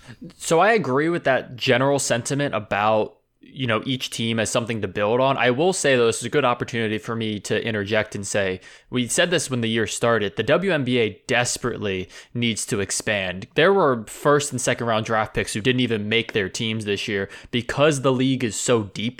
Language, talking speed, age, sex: English, 210 wpm, 20-39, male